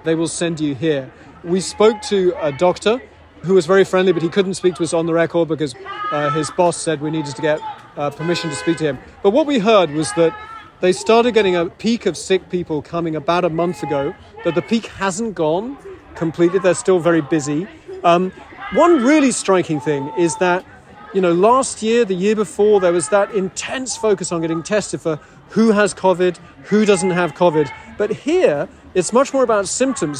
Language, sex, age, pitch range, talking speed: English, male, 30-49, 160-195 Hz, 205 wpm